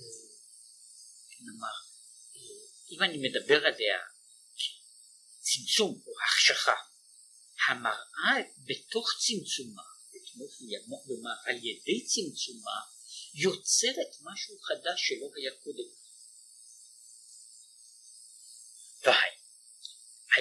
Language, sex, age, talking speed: Hebrew, male, 50-69, 70 wpm